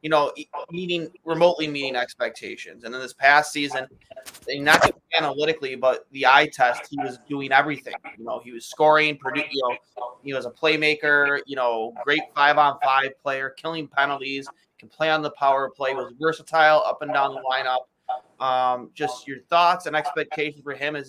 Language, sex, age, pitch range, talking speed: English, male, 20-39, 125-150 Hz, 180 wpm